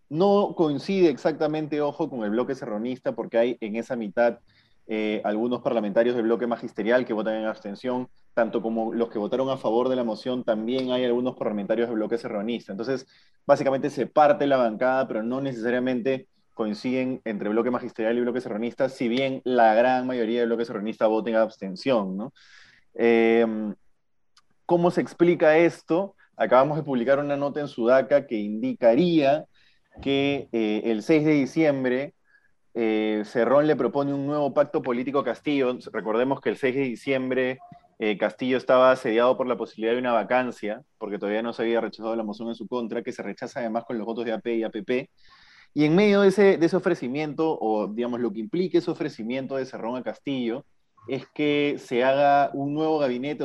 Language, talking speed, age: Spanish, 180 wpm, 20-39